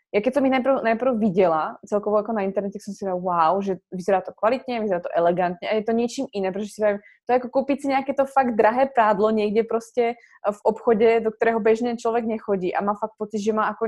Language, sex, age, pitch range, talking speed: Slovak, female, 20-39, 200-230 Hz, 235 wpm